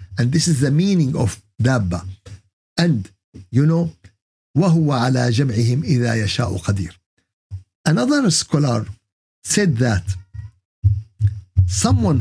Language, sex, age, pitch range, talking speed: Arabic, male, 50-69, 100-155 Hz, 105 wpm